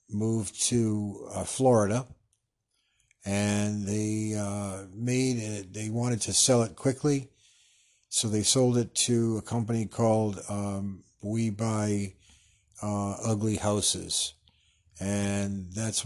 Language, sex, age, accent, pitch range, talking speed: English, male, 50-69, American, 100-115 Hz, 115 wpm